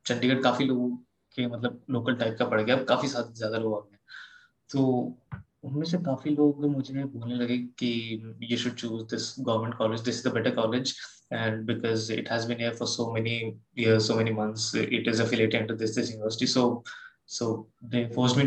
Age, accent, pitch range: 20-39, Indian, 115-130 Hz